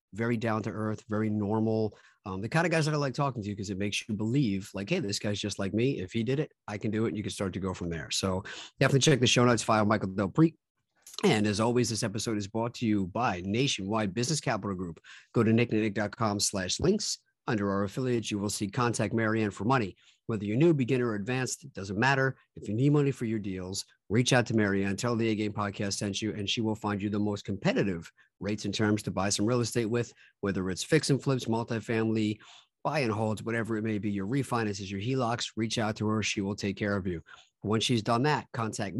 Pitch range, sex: 100-120 Hz, male